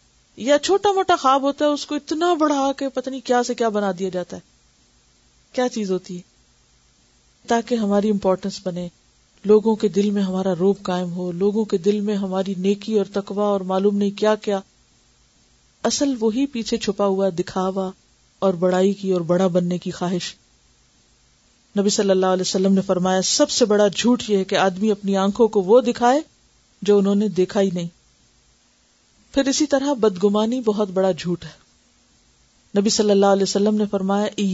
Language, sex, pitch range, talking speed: Urdu, female, 190-230 Hz, 180 wpm